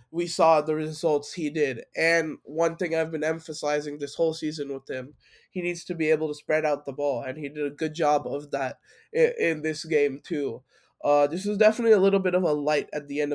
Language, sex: English, male